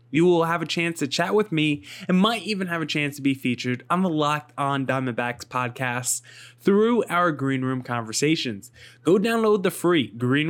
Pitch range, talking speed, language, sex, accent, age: 125-170 Hz, 195 wpm, English, male, American, 20-39